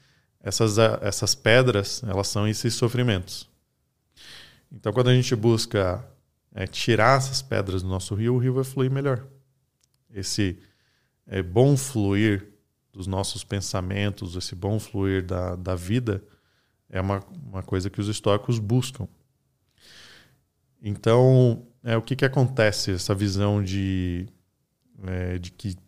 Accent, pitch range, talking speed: Brazilian, 100-130 Hz, 130 wpm